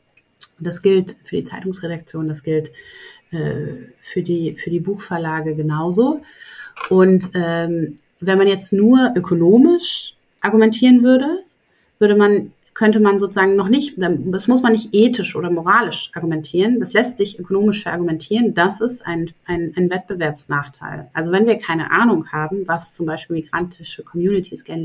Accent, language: German, German